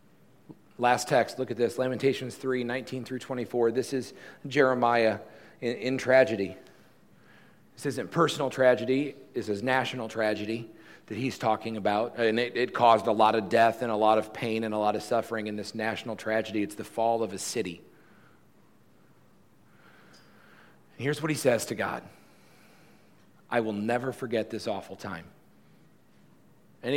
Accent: American